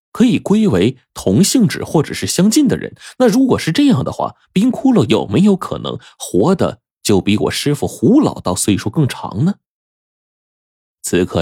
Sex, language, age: male, Chinese, 20-39